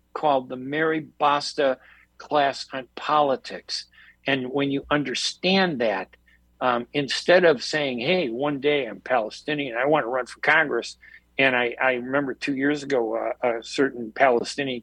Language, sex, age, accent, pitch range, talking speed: English, male, 60-79, American, 125-155 Hz, 155 wpm